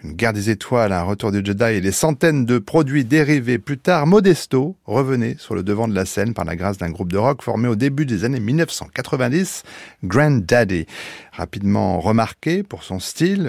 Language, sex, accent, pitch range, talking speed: French, male, French, 100-140 Hz, 195 wpm